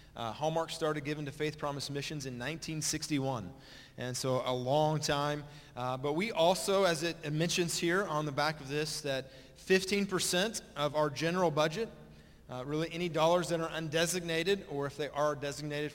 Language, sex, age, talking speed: English, male, 30-49, 175 wpm